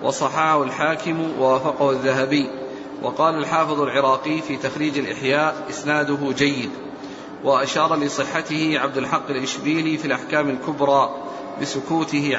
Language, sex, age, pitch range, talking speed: Arabic, male, 40-59, 145-160 Hz, 100 wpm